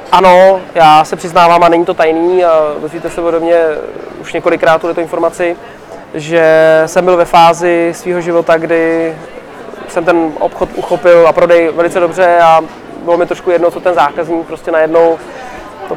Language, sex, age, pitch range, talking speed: Czech, male, 20-39, 165-180 Hz, 165 wpm